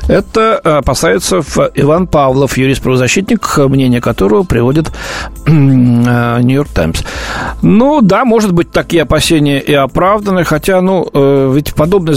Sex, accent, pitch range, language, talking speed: male, native, 125-160 Hz, Russian, 115 wpm